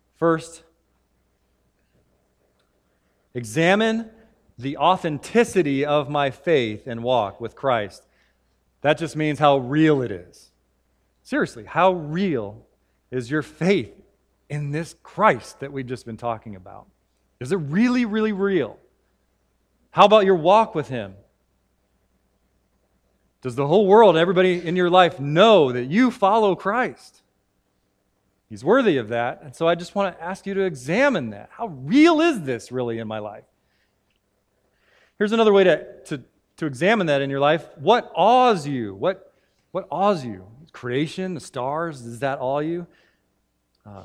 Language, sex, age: English, male, 40-59